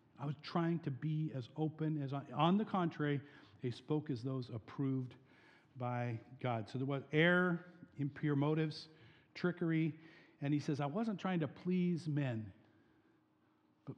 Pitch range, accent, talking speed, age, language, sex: 125-160 Hz, American, 155 wpm, 50-69, English, male